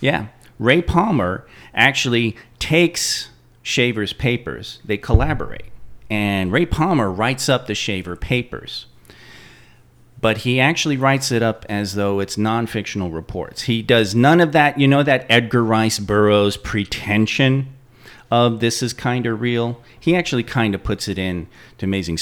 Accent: American